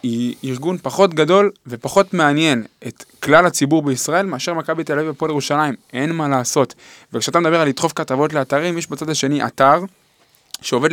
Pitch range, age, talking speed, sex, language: 135-170 Hz, 20-39, 165 wpm, male, Hebrew